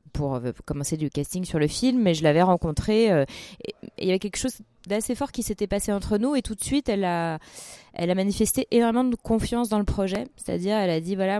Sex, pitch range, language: female, 160-215 Hz, French